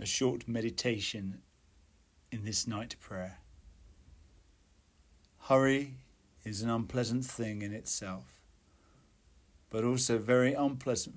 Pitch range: 75-115 Hz